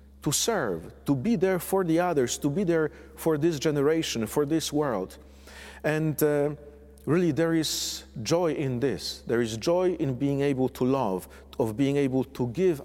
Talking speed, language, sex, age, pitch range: 175 wpm, English, male, 50-69, 110-150 Hz